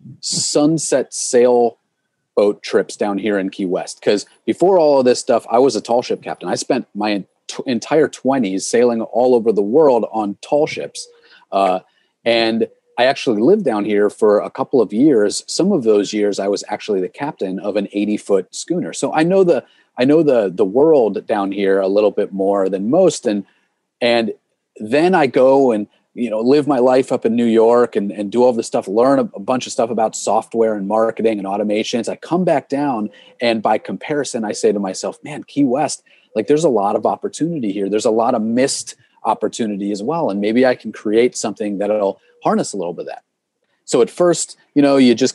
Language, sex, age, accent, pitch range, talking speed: English, male, 30-49, American, 105-135 Hz, 210 wpm